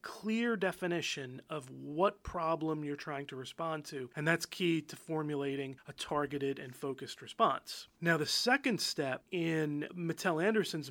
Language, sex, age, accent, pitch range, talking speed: English, male, 30-49, American, 150-180 Hz, 150 wpm